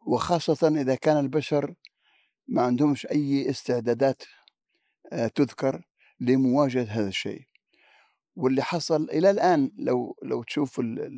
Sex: male